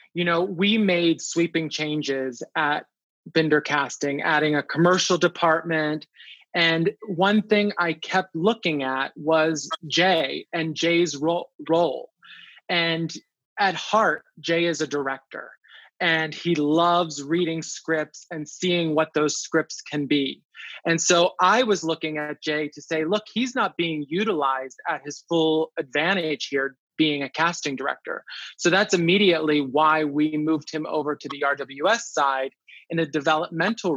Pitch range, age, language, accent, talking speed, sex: 150-175 Hz, 20-39, English, American, 145 wpm, male